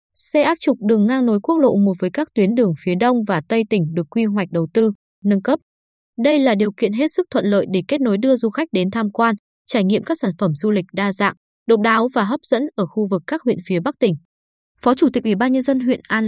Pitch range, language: 195-255 Hz, Vietnamese